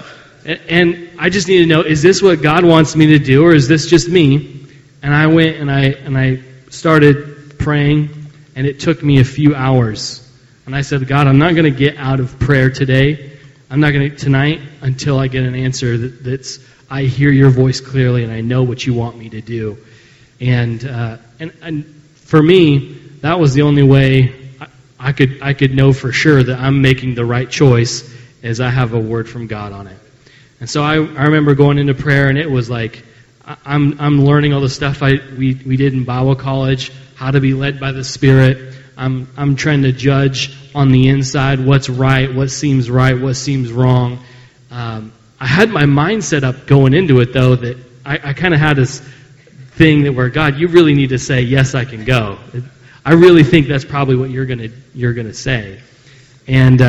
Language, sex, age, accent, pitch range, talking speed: English, male, 30-49, American, 130-145 Hz, 210 wpm